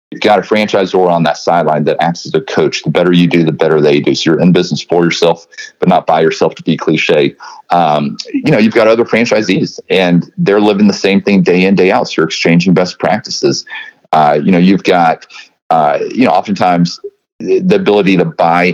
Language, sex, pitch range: English, male, 85-100 Hz